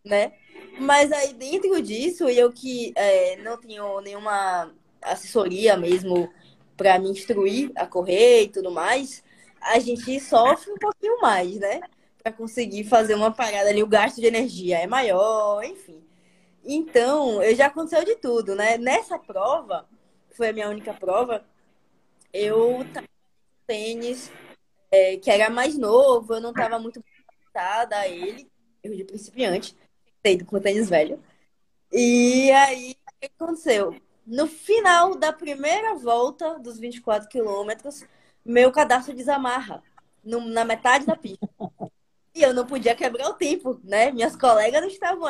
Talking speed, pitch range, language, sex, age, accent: 145 wpm, 220-300 Hz, Portuguese, female, 20-39, Brazilian